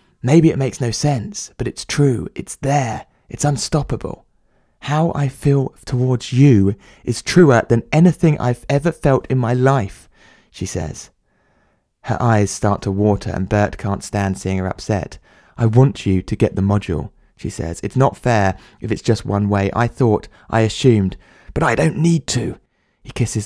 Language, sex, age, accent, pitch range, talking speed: English, male, 20-39, British, 100-130 Hz, 175 wpm